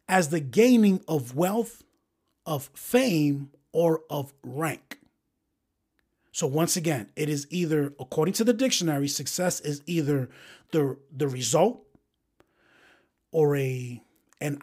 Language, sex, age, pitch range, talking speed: English, male, 30-49, 145-190 Hz, 115 wpm